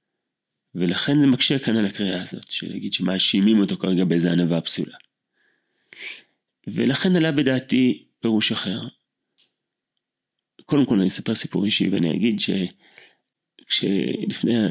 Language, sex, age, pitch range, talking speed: Hebrew, male, 30-49, 95-130 Hz, 115 wpm